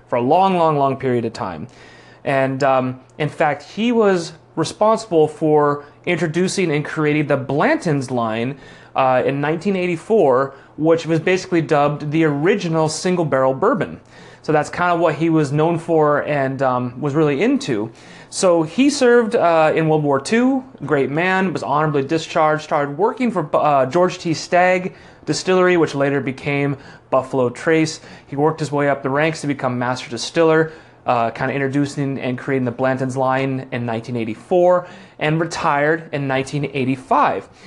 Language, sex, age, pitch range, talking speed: English, male, 30-49, 135-175 Hz, 160 wpm